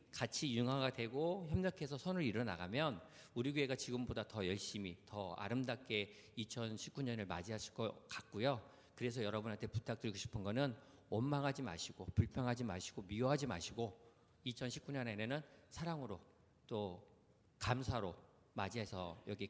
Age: 50-69